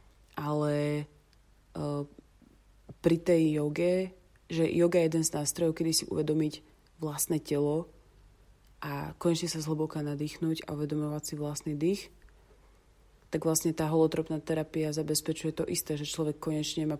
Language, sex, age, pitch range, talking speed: Slovak, female, 30-49, 145-160 Hz, 135 wpm